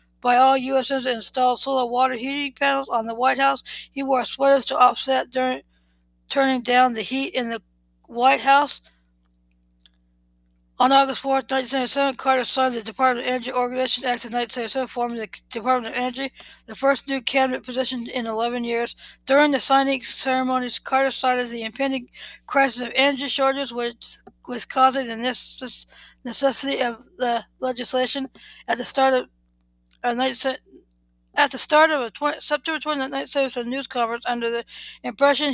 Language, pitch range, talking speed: English, 235-265 Hz, 155 wpm